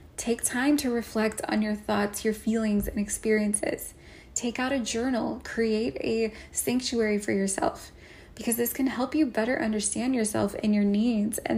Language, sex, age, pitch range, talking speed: English, female, 10-29, 210-250 Hz, 165 wpm